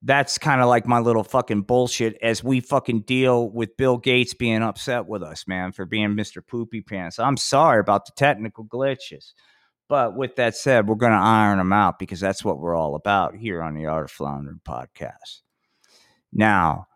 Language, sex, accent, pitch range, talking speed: English, male, American, 95-120 Hz, 195 wpm